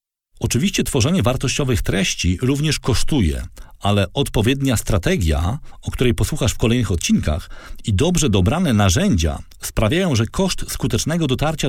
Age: 40-59